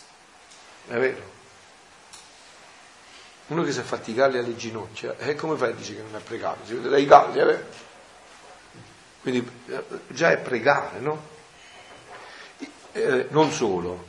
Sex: male